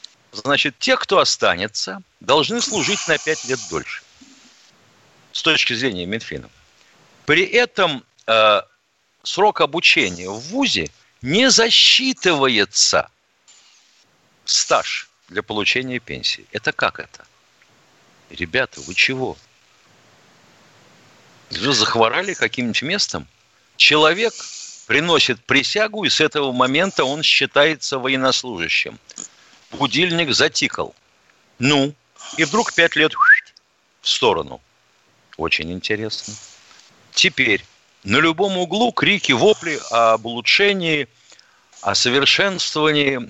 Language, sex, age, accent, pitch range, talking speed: Russian, male, 50-69, native, 120-195 Hz, 95 wpm